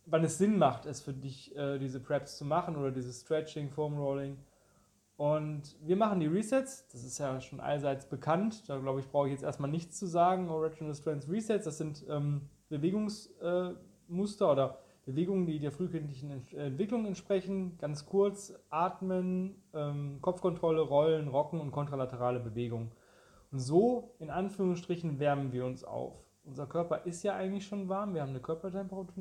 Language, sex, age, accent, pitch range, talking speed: German, male, 20-39, German, 140-185 Hz, 160 wpm